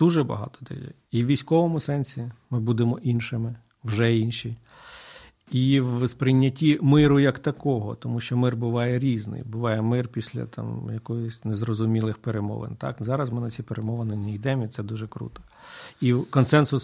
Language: Ukrainian